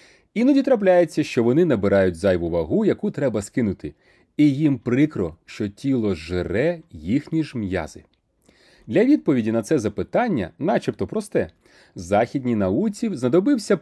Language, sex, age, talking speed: Ukrainian, male, 30-49, 125 wpm